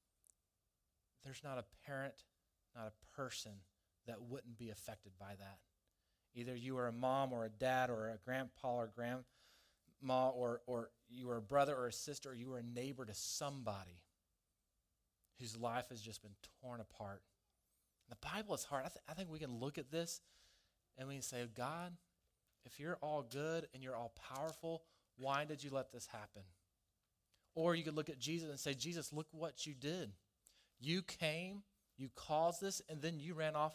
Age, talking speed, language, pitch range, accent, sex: 30-49, 185 wpm, English, 110-155 Hz, American, male